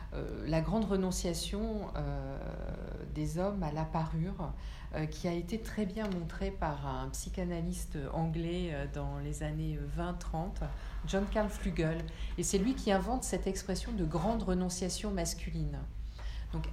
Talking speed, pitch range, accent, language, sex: 145 wpm, 150-185 Hz, French, French, female